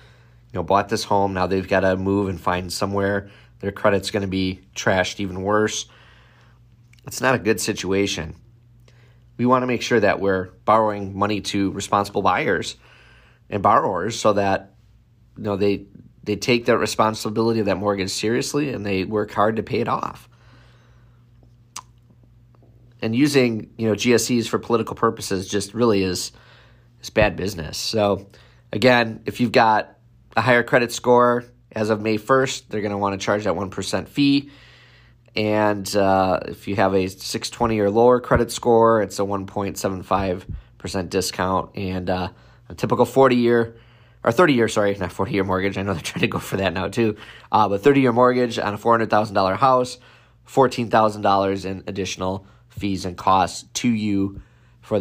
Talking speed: 180 wpm